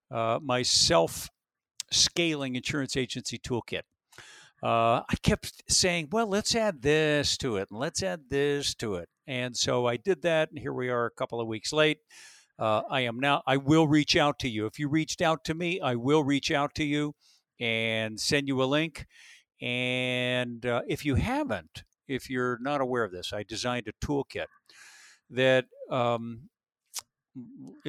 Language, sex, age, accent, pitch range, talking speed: English, male, 60-79, American, 120-150 Hz, 170 wpm